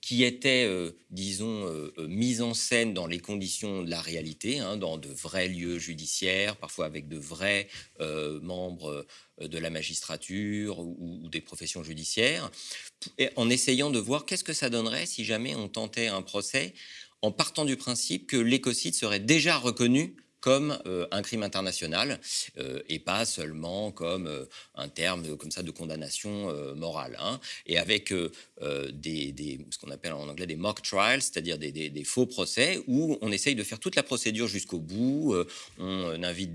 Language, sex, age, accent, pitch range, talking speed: French, male, 50-69, French, 85-120 Hz, 180 wpm